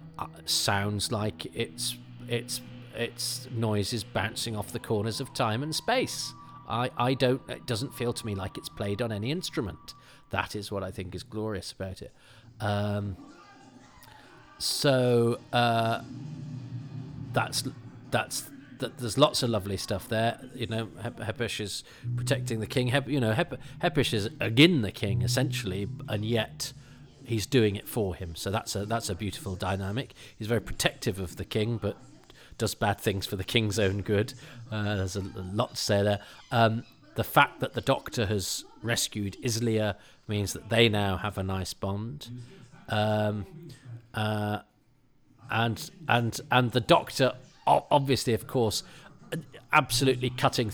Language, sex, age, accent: English, male, 40-59, British